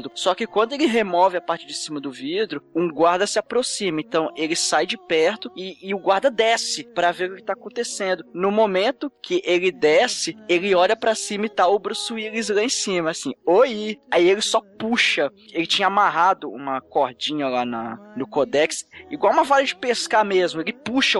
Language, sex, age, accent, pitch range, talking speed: Portuguese, male, 10-29, Brazilian, 160-215 Hz, 200 wpm